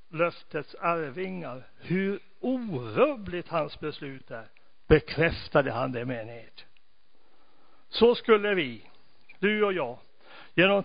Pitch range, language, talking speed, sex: 145-190 Hz, Swedish, 105 wpm, male